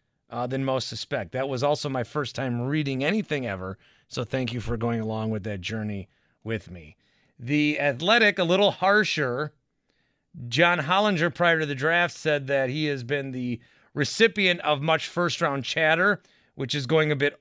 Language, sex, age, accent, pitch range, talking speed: English, male, 30-49, American, 120-155 Hz, 175 wpm